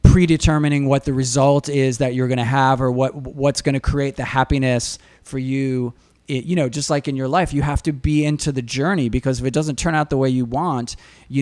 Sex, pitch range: male, 125-150 Hz